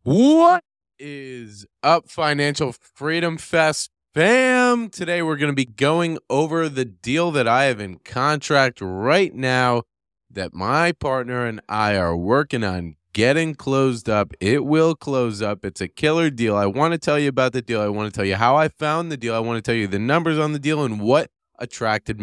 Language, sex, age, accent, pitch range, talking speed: English, male, 20-39, American, 110-150 Hz, 195 wpm